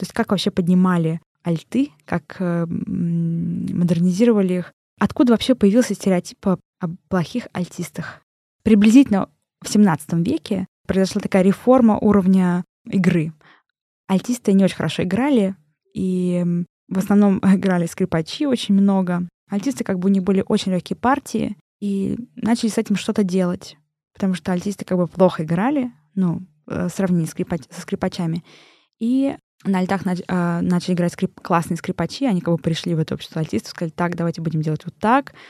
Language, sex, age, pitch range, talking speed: Russian, female, 20-39, 170-205 Hz, 140 wpm